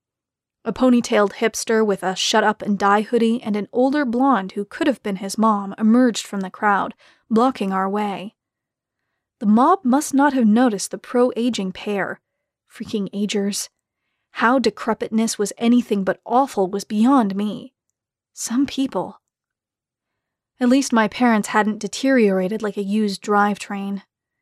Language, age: English, 30-49